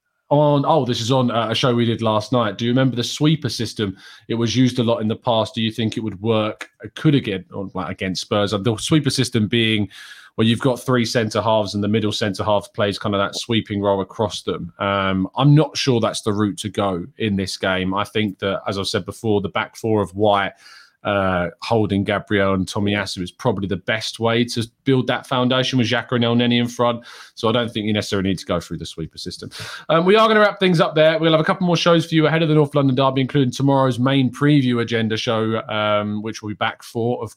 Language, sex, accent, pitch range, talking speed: English, male, British, 105-130 Hz, 245 wpm